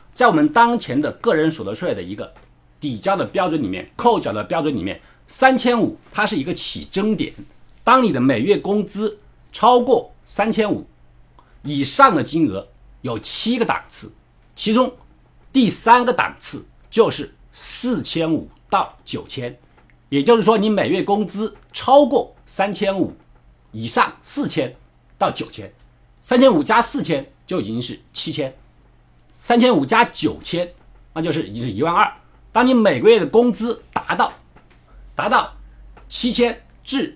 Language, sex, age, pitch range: Chinese, male, 50-69, 155-250 Hz